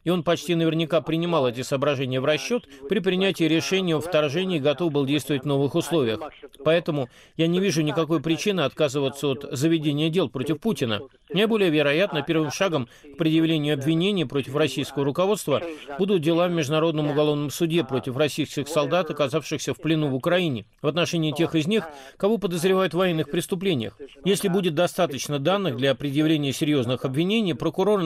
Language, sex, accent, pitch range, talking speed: Russian, male, native, 145-175 Hz, 165 wpm